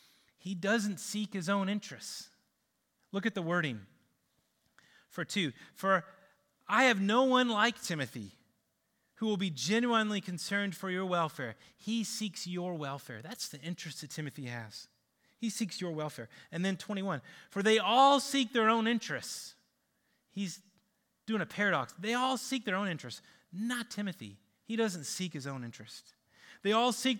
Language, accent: English, American